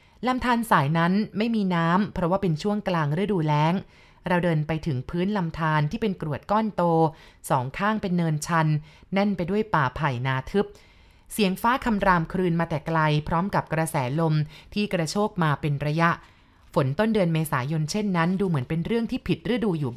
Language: Thai